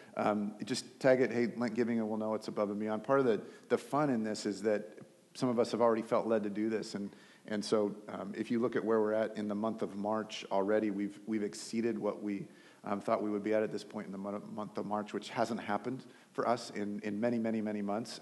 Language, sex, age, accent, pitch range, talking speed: English, male, 40-59, American, 105-115 Hz, 265 wpm